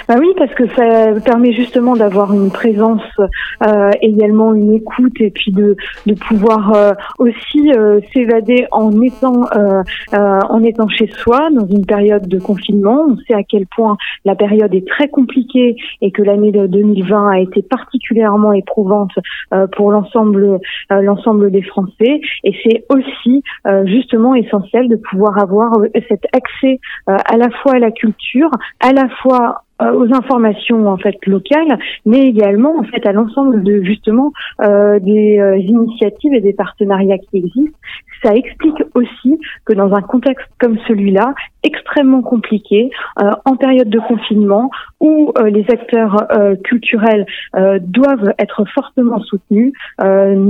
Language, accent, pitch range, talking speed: French, French, 205-245 Hz, 160 wpm